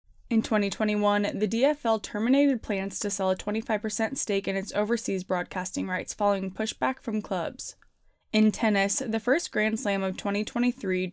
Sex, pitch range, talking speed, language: female, 190-225 Hz, 150 wpm, English